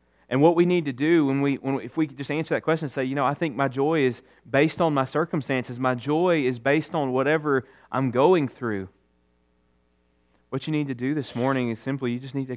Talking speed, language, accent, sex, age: 250 wpm, English, American, male, 30-49